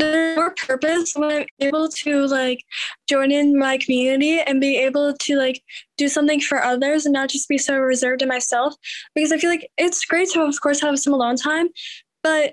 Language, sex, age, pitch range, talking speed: English, female, 10-29, 265-300 Hz, 205 wpm